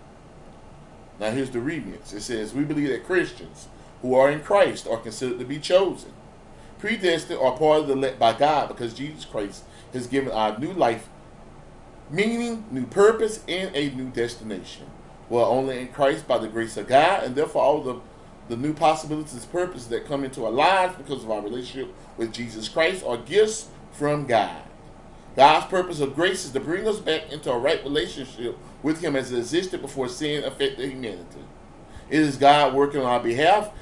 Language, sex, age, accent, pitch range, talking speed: English, male, 30-49, American, 125-165 Hz, 190 wpm